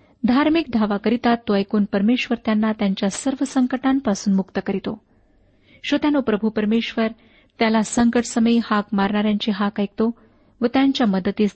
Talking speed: 125 wpm